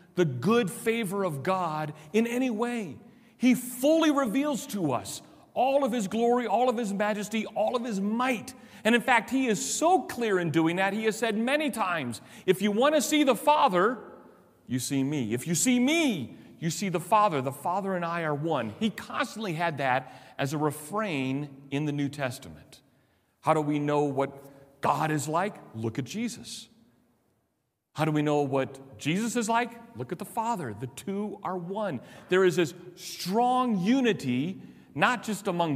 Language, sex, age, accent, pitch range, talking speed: English, male, 40-59, American, 145-220 Hz, 185 wpm